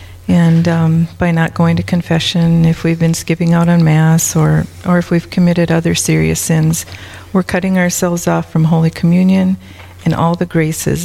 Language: English